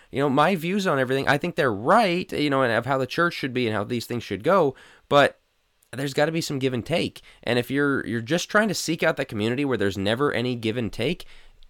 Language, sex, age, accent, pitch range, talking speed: English, male, 20-39, American, 115-160 Hz, 260 wpm